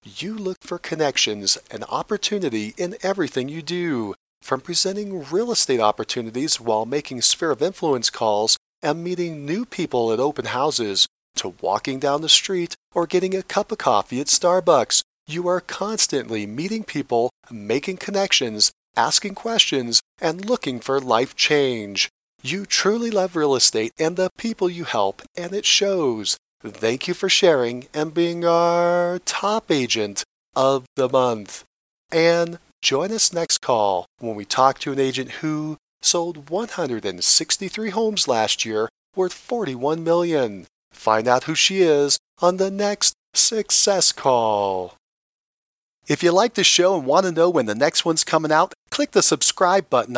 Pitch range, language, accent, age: 125-190 Hz, English, American, 40-59